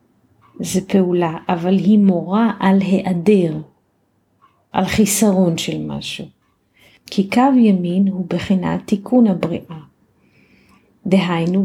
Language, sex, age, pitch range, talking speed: Hebrew, female, 40-59, 175-210 Hz, 100 wpm